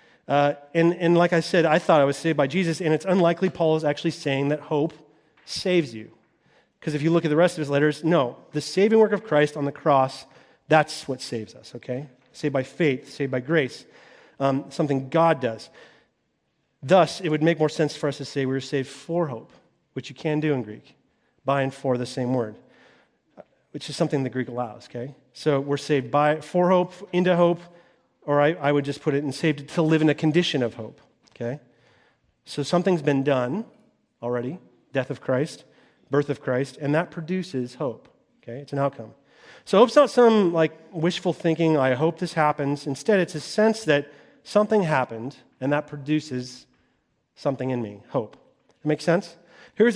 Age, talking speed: 40-59, 195 wpm